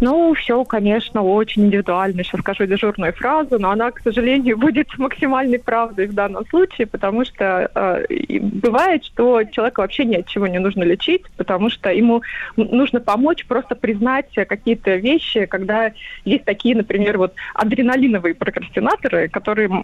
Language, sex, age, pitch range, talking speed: Russian, female, 20-39, 205-255 Hz, 150 wpm